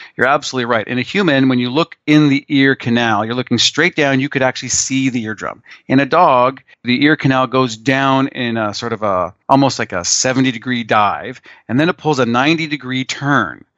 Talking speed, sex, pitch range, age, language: 210 wpm, male, 125-145 Hz, 40-59, English